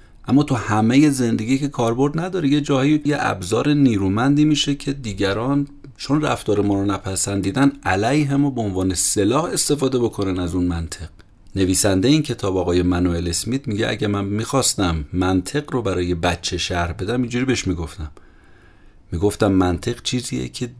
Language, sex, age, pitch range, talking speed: Persian, male, 30-49, 95-135 Hz, 150 wpm